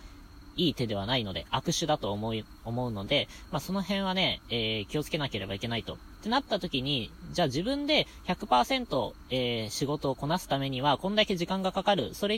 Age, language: 20-39, Japanese